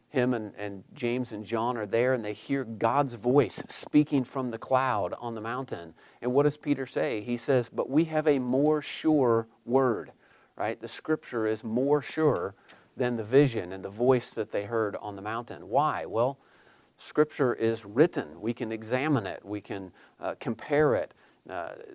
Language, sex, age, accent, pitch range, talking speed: English, male, 40-59, American, 110-135 Hz, 180 wpm